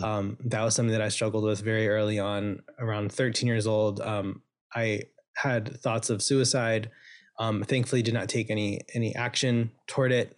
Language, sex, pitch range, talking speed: English, male, 110-130 Hz, 180 wpm